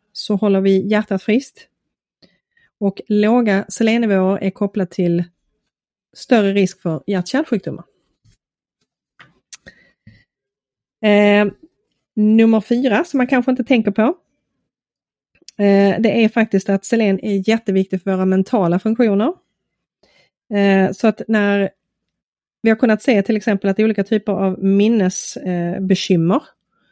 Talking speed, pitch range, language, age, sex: 120 wpm, 185-215 Hz, Swedish, 30-49, female